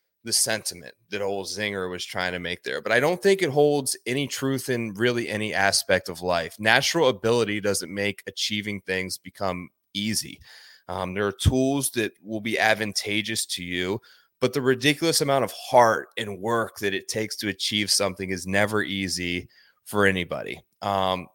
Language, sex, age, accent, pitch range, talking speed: English, male, 20-39, American, 100-130 Hz, 175 wpm